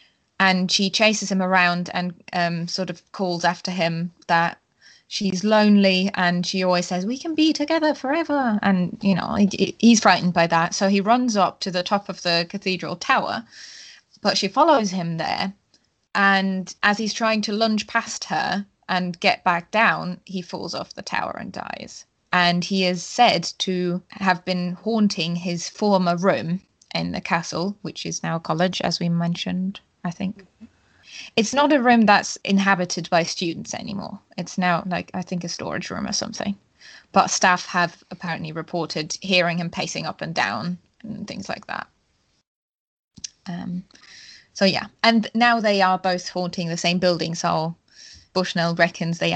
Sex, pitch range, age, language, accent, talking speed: female, 175-205 Hz, 20-39, English, British, 170 wpm